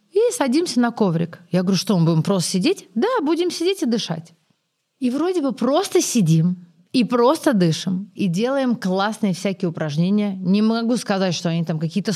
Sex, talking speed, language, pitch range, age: female, 180 wpm, Russian, 170-235 Hz, 30-49